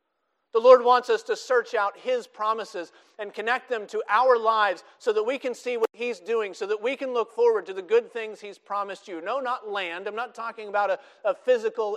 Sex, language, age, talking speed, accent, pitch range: male, English, 40-59, 230 wpm, American, 190-295 Hz